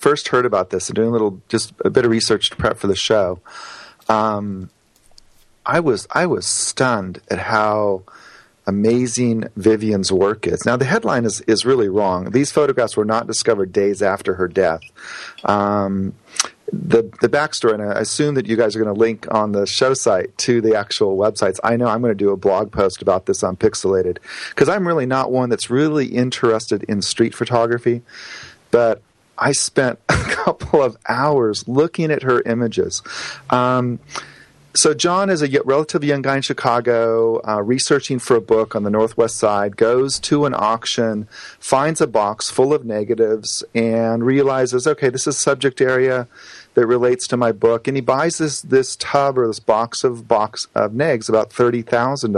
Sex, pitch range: male, 110-130 Hz